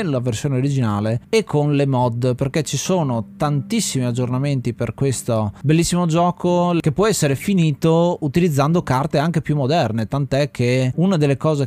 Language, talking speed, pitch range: Italian, 155 wpm, 125-155 Hz